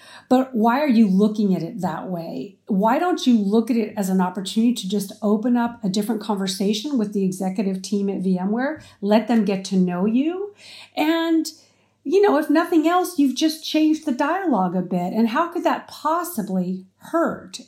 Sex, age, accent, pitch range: female, 40-59, American, 200-275 Hz